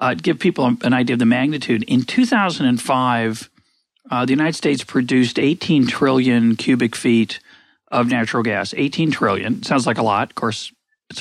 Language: English